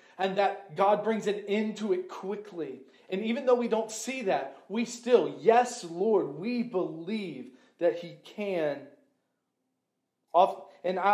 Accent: American